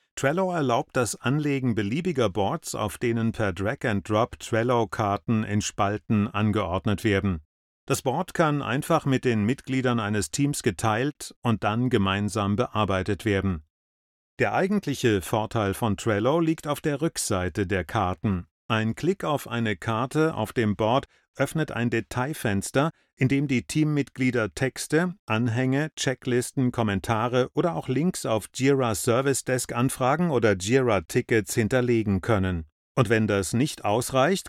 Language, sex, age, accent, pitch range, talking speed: German, male, 30-49, German, 105-130 Hz, 135 wpm